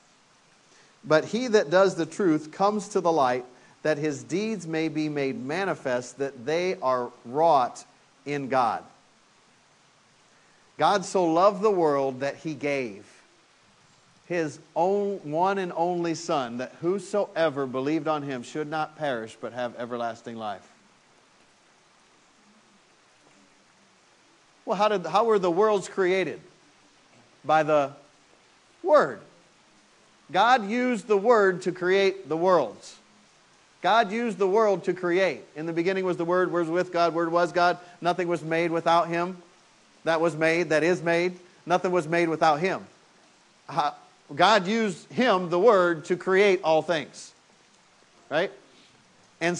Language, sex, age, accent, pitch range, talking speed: English, male, 50-69, American, 155-200 Hz, 135 wpm